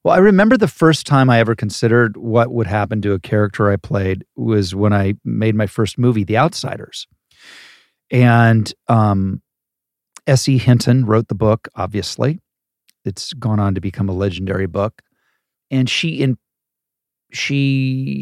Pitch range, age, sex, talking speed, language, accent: 105-125 Hz, 50-69, male, 150 wpm, English, American